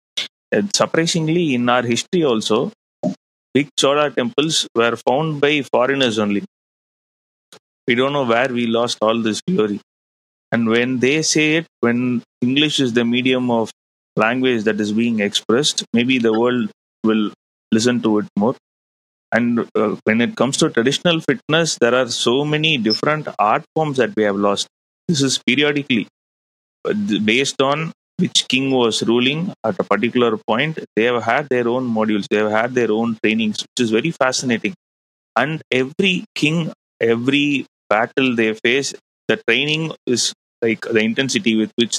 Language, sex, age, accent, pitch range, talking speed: English, male, 30-49, Indian, 110-140 Hz, 155 wpm